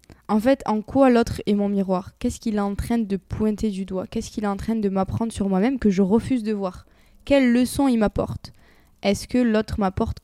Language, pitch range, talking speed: French, 190-230 Hz, 230 wpm